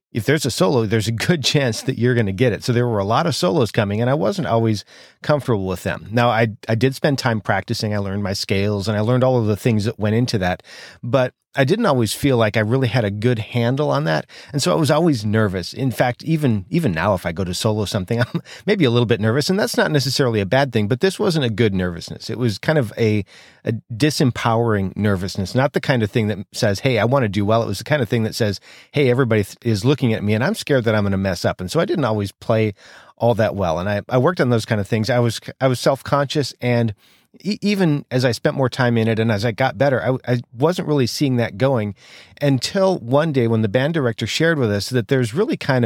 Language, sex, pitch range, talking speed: English, male, 110-135 Hz, 265 wpm